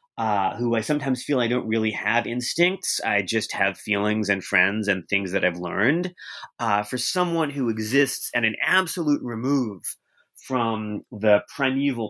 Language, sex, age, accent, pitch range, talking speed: English, male, 30-49, American, 105-130 Hz, 165 wpm